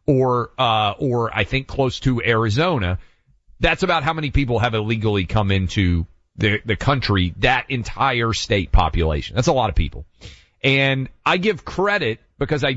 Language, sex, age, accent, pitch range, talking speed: English, male, 40-59, American, 100-135 Hz, 165 wpm